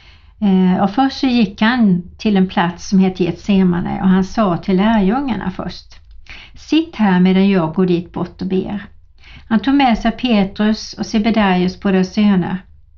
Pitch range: 180-225 Hz